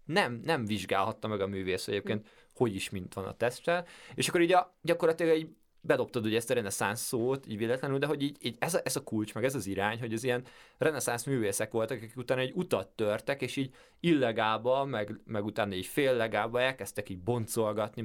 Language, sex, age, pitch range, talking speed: Hungarian, male, 20-39, 105-130 Hz, 205 wpm